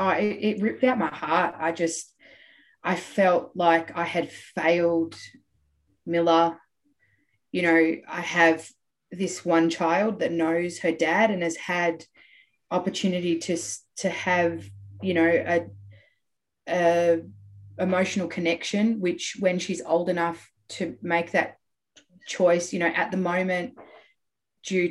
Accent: Australian